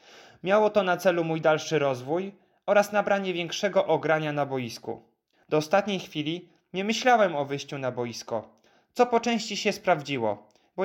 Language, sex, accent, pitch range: Polish, male, native, 145-190 Hz